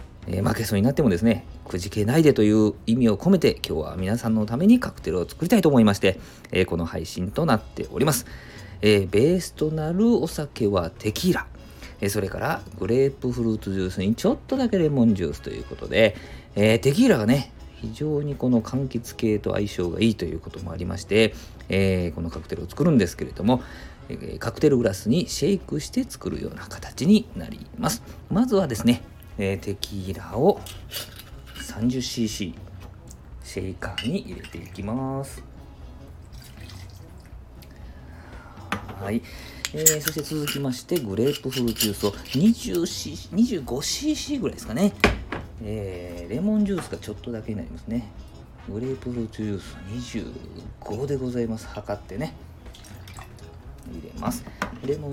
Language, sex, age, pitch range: Japanese, male, 40-59, 90-125 Hz